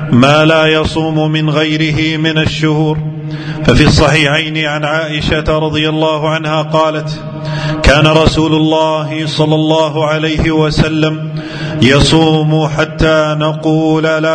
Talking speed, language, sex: 110 wpm, Arabic, male